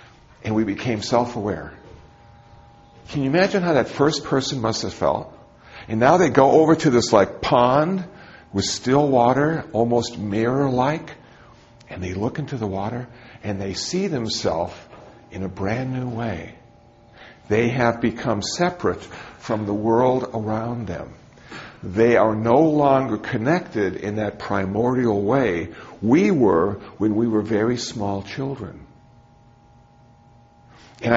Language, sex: English, male